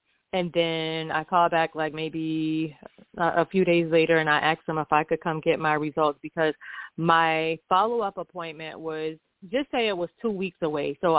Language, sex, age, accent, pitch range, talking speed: English, female, 30-49, American, 160-240 Hz, 190 wpm